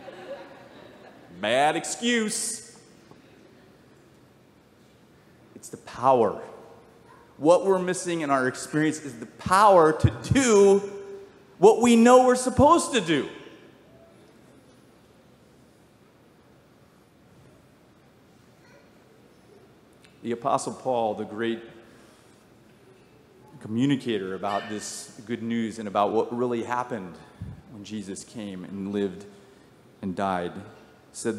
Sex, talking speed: male, 90 wpm